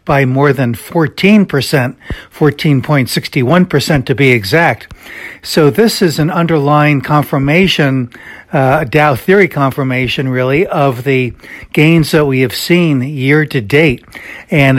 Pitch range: 130-155 Hz